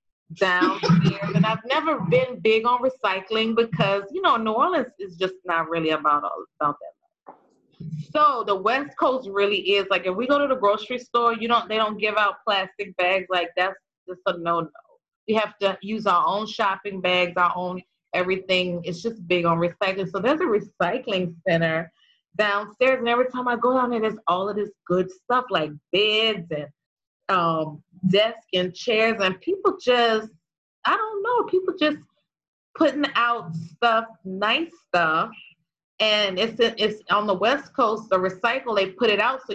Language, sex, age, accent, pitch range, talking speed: English, female, 30-49, American, 180-235 Hz, 180 wpm